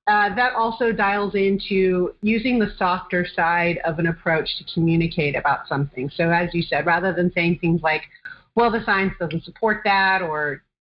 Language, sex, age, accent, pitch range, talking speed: English, female, 30-49, American, 170-210 Hz, 175 wpm